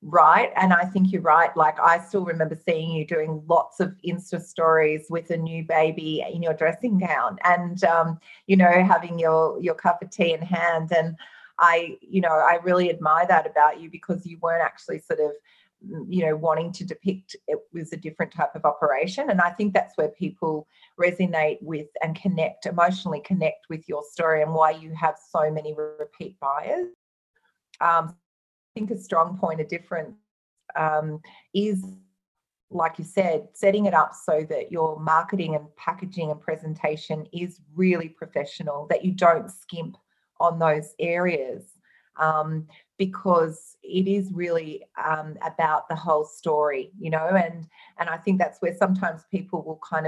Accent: Australian